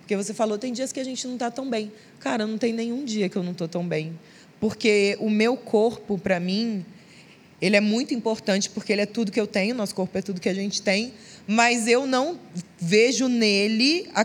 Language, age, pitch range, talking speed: Portuguese, 20-39, 200-250 Hz, 230 wpm